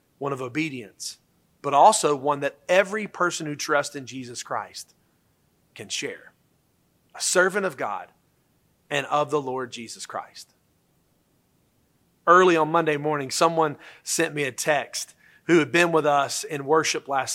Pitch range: 140-175 Hz